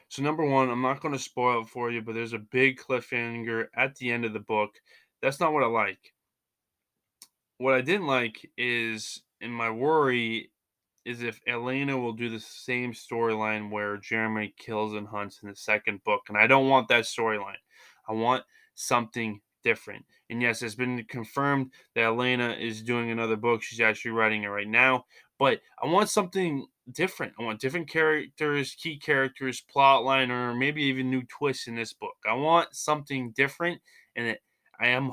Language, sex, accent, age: English, male, American, 20-39